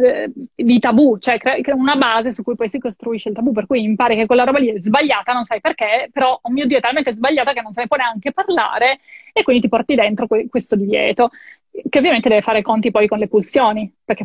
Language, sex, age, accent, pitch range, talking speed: Italian, female, 20-39, native, 220-260 Hz, 250 wpm